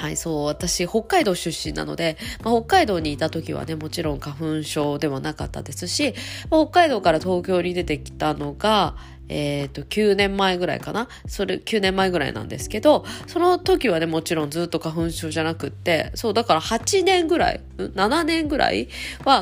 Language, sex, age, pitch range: Japanese, female, 20-39, 155-220 Hz